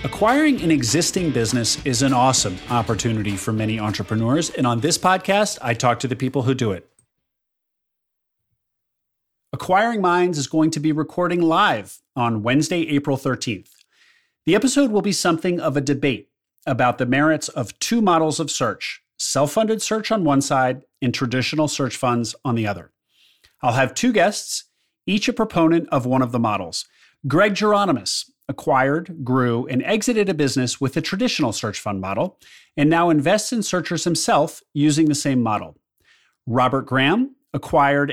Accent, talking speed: American, 160 wpm